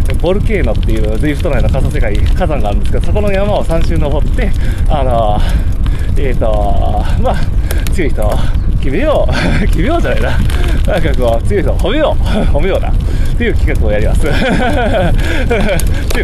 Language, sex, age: Japanese, male, 20-39